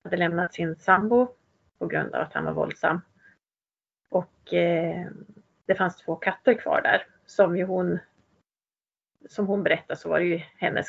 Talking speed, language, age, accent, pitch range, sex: 165 wpm, Swedish, 30-49, native, 180-220 Hz, female